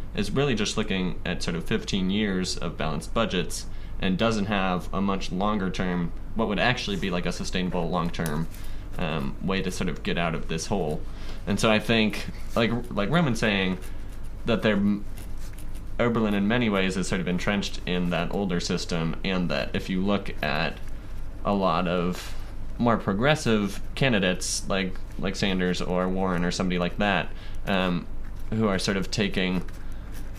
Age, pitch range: 20-39, 90-100 Hz